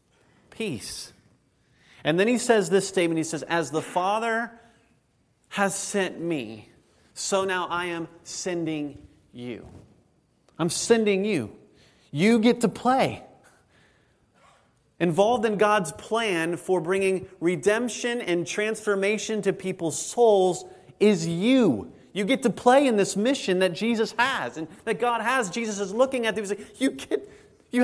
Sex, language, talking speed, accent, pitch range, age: male, English, 140 wpm, American, 170-215 Hz, 30-49